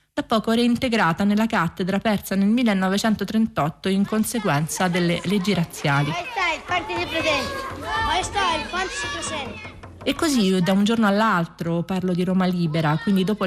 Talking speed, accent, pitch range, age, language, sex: 115 wpm, native, 175-225 Hz, 30-49, Italian, female